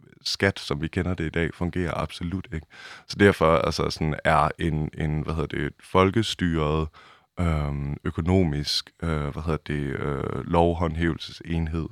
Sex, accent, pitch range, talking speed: male, native, 75-90 Hz, 145 wpm